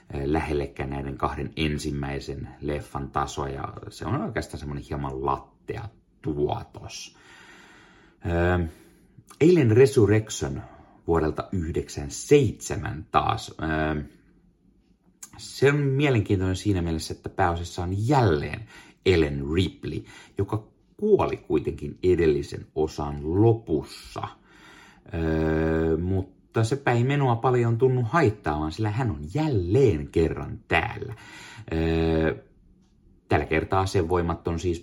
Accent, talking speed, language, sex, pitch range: native, 100 wpm, Finnish, male, 75-100 Hz